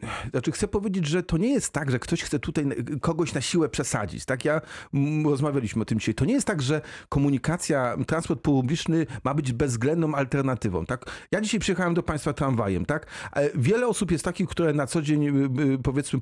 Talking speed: 190 wpm